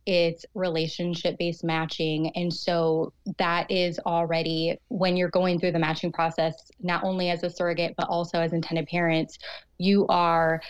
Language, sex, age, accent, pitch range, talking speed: English, female, 20-39, American, 175-205 Hz, 150 wpm